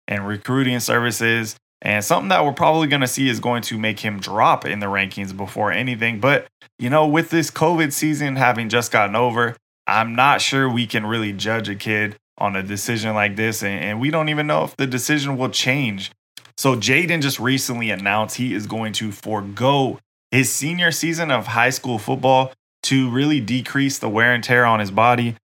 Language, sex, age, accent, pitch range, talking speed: English, male, 20-39, American, 105-130 Hz, 200 wpm